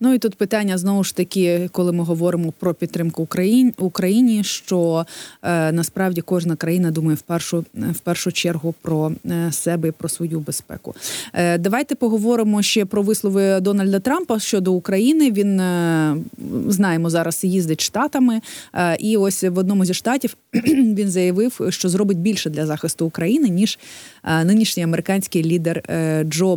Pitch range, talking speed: 165-225 Hz, 140 wpm